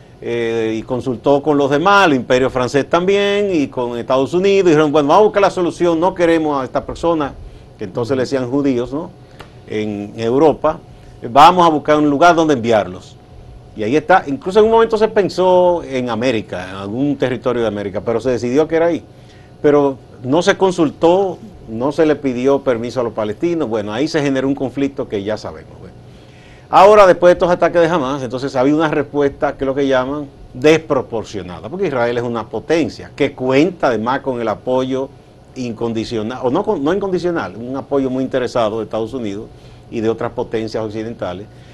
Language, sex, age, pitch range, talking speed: Spanish, male, 40-59, 115-155 Hz, 185 wpm